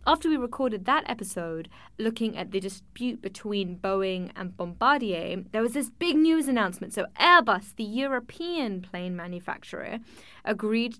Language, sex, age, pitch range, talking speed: English, female, 10-29, 190-255 Hz, 140 wpm